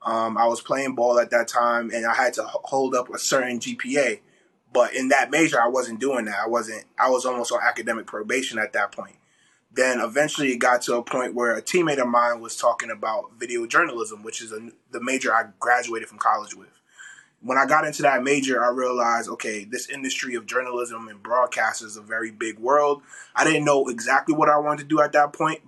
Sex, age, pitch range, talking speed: male, 20-39, 120-140 Hz, 220 wpm